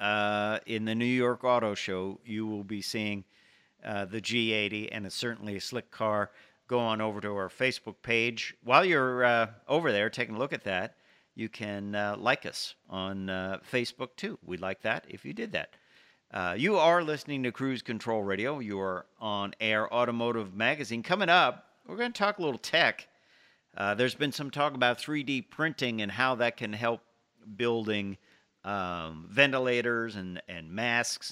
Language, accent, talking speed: English, American, 180 wpm